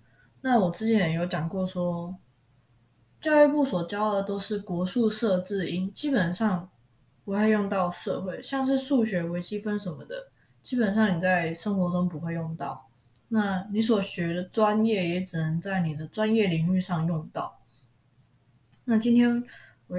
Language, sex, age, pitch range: Chinese, female, 20-39, 160-210 Hz